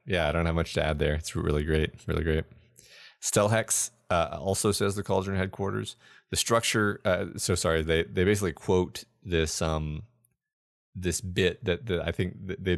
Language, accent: English, American